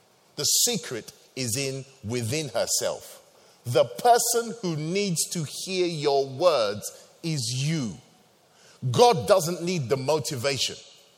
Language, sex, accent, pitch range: English, male, British, 135-195 Hz